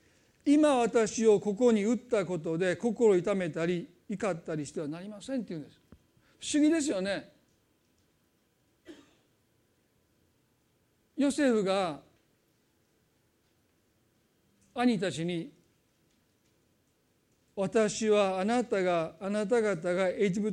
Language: Japanese